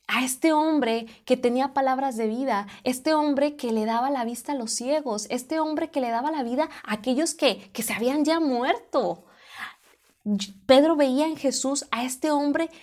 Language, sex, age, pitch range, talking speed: Spanish, female, 20-39, 210-265 Hz, 185 wpm